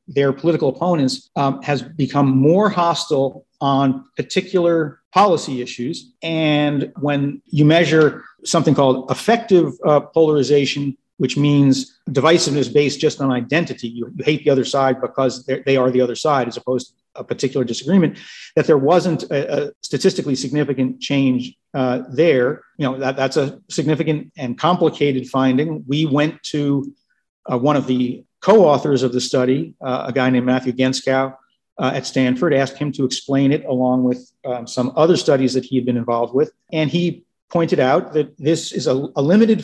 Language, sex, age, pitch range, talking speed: English, male, 50-69, 130-160 Hz, 170 wpm